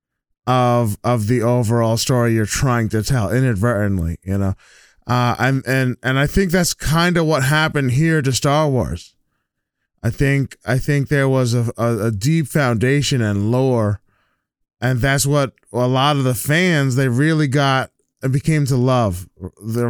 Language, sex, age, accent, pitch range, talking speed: English, male, 20-39, American, 120-145 Hz, 170 wpm